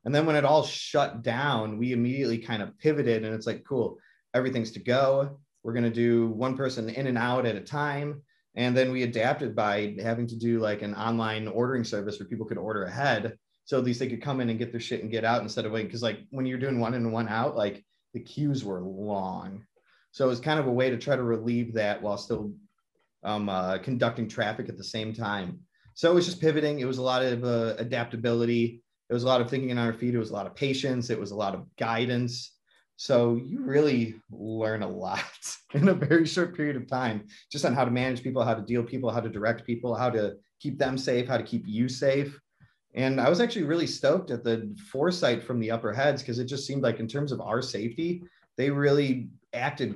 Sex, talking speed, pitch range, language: male, 240 wpm, 115-135 Hz, English